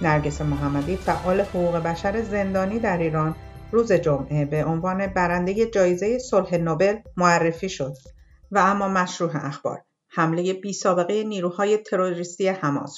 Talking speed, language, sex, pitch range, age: 130 wpm, Persian, female, 155-200 Hz, 50-69